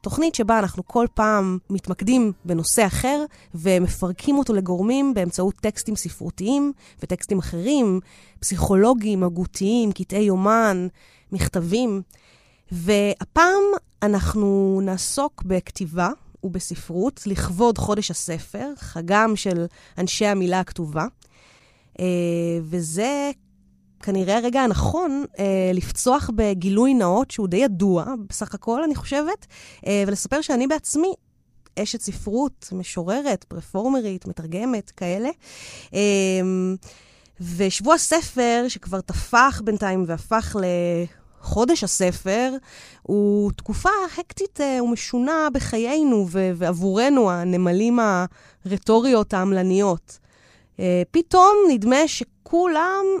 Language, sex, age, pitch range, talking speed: Hebrew, female, 30-49, 185-250 Hz, 85 wpm